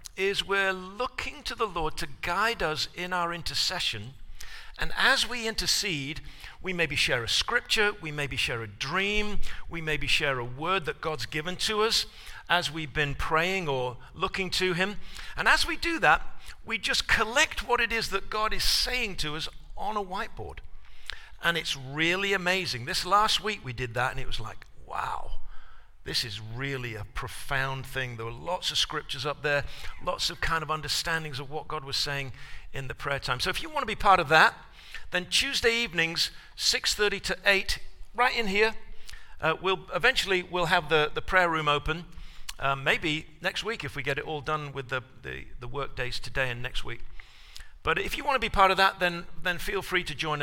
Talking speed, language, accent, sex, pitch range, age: 200 wpm, English, British, male, 140-195 Hz, 50-69